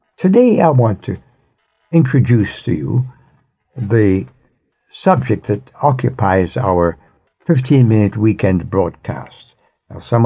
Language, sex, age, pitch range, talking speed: English, male, 60-79, 95-125 Hz, 100 wpm